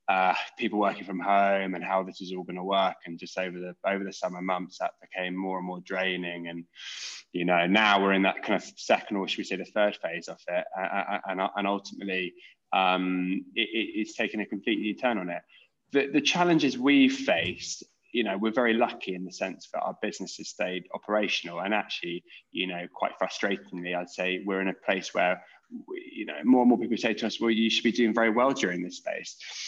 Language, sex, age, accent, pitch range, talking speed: English, male, 20-39, British, 95-110 Hz, 225 wpm